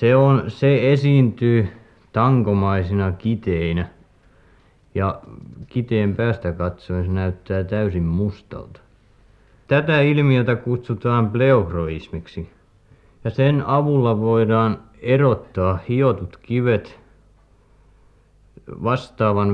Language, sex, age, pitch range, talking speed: Finnish, male, 50-69, 90-115 Hz, 75 wpm